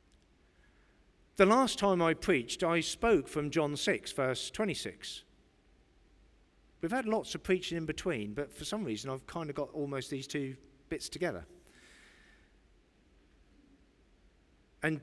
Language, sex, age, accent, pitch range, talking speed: English, male, 50-69, British, 140-200 Hz, 130 wpm